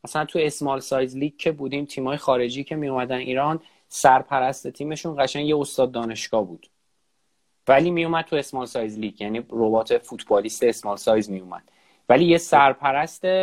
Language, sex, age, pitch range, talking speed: Persian, male, 30-49, 135-170 Hz, 165 wpm